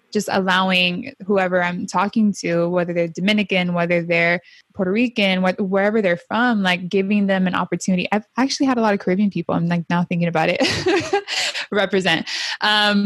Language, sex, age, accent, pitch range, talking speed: English, female, 20-39, American, 180-225 Hz, 170 wpm